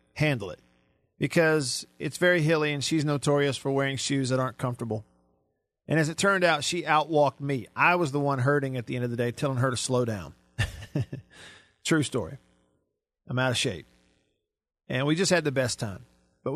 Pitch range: 120-155 Hz